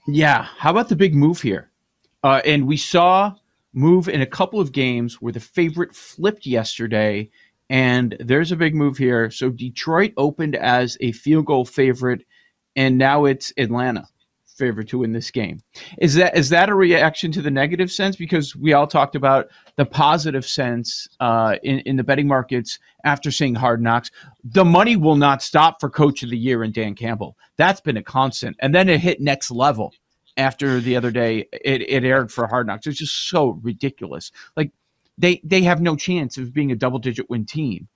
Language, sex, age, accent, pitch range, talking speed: English, male, 40-59, American, 125-165 Hz, 195 wpm